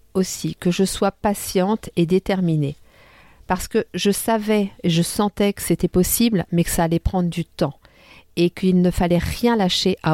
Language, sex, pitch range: French, female, 160-190 Hz